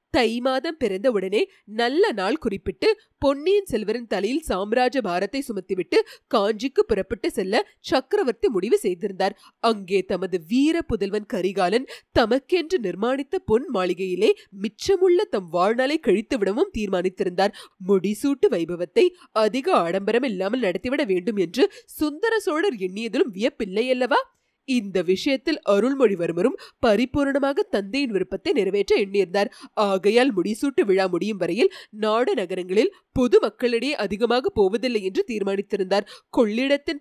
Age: 30-49